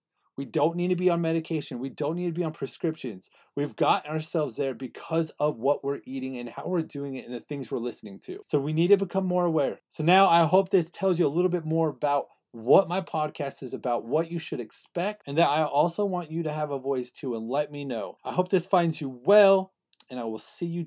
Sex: male